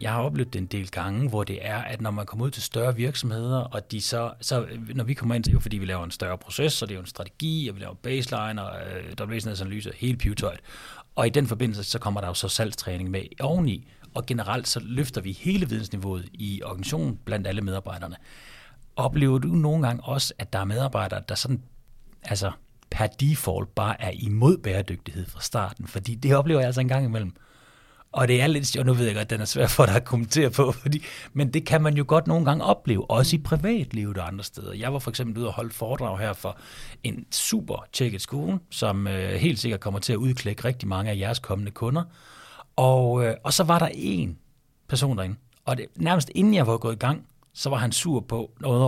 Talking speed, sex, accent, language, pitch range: 225 wpm, male, native, Danish, 105-140 Hz